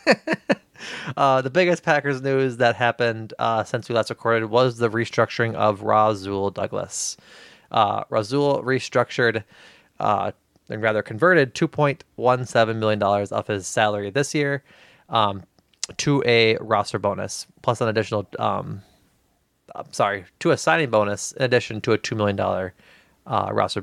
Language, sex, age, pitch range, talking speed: English, male, 20-39, 105-140 Hz, 145 wpm